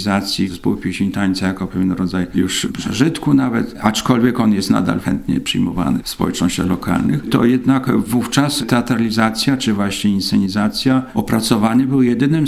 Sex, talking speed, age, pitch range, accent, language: male, 135 wpm, 50-69, 95-120 Hz, native, Polish